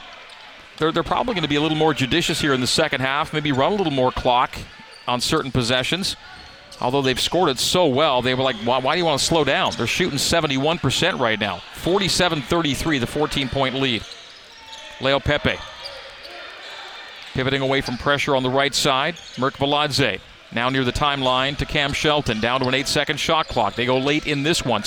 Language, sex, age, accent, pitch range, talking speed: English, male, 40-59, American, 130-160 Hz, 195 wpm